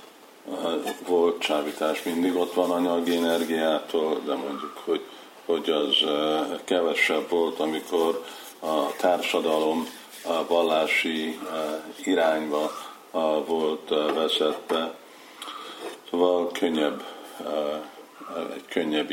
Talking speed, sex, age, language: 80 wpm, male, 50-69, Hungarian